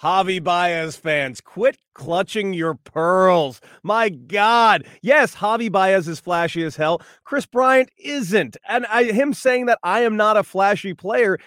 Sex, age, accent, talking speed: male, 30-49, American, 150 wpm